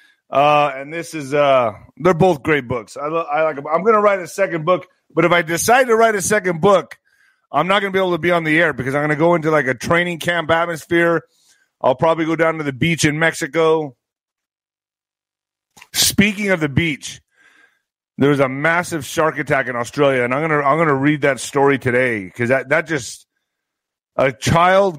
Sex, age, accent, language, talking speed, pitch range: male, 30-49, American, English, 215 wpm, 150-235 Hz